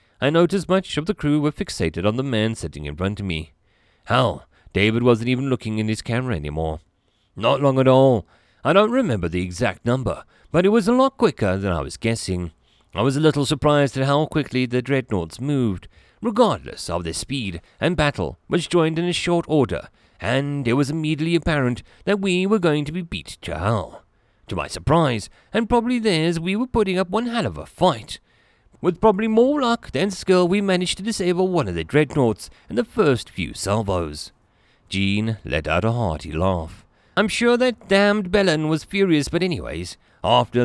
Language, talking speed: English, 195 wpm